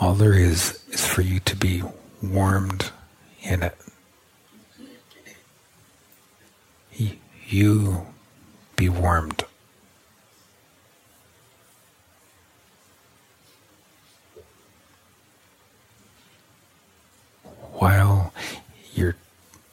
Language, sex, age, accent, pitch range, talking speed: English, male, 60-79, American, 95-105 Hz, 50 wpm